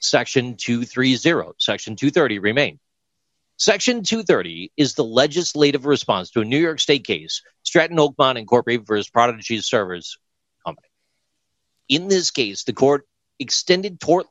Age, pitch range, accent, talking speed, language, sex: 40-59, 125-175 Hz, American, 130 wpm, English, male